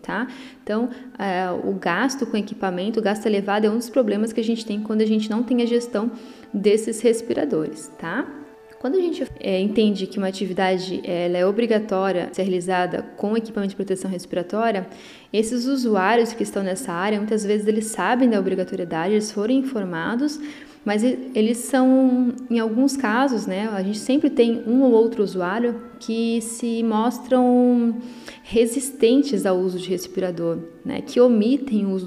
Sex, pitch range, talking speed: female, 195-245 Hz, 165 wpm